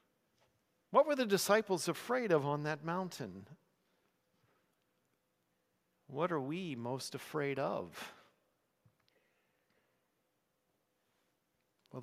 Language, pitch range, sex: English, 130-160 Hz, male